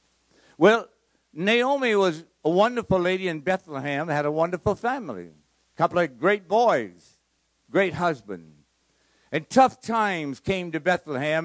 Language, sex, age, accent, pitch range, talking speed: English, male, 60-79, American, 115-185 Hz, 130 wpm